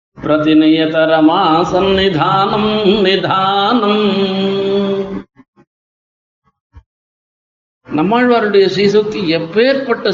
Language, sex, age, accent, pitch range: Tamil, male, 50-69, native, 195-255 Hz